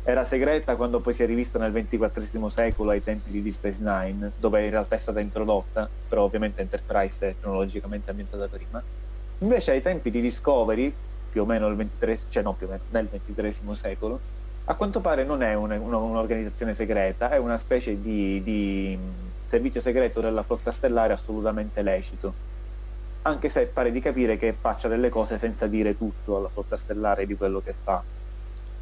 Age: 30-49